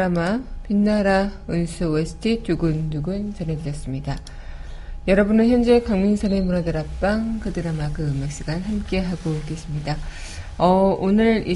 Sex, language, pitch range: female, Korean, 160-210 Hz